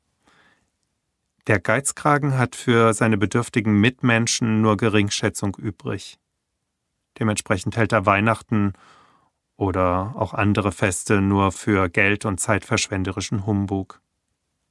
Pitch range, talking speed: 95-115 Hz, 100 wpm